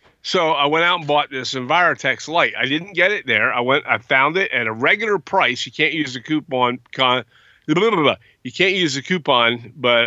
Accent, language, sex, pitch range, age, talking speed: American, English, male, 120-145 Hz, 40-59, 230 wpm